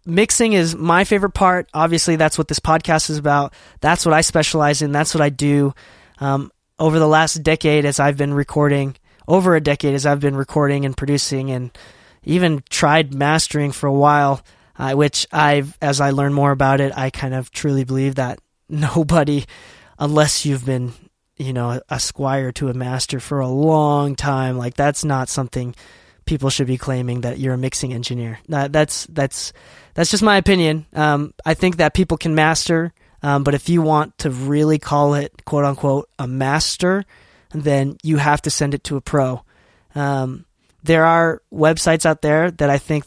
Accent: American